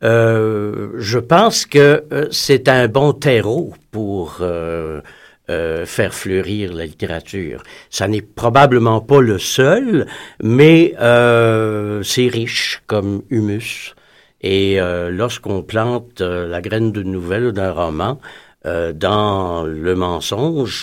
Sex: male